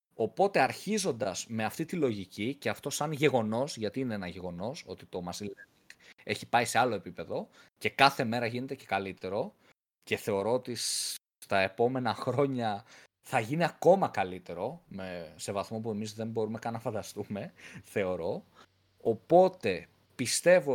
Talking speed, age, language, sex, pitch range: 145 wpm, 20-39, Greek, male, 110-175 Hz